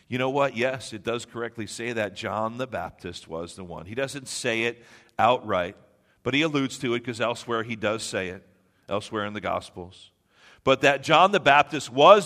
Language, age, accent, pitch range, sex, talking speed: English, 50-69, American, 100-135 Hz, male, 200 wpm